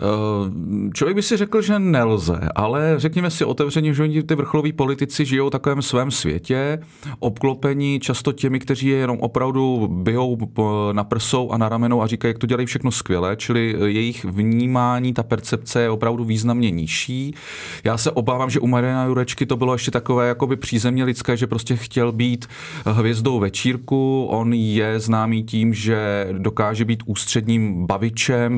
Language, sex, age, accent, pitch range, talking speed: Czech, male, 40-59, native, 110-135 Hz, 160 wpm